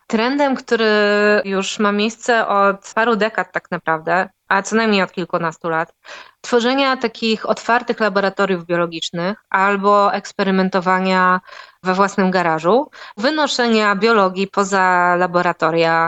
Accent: native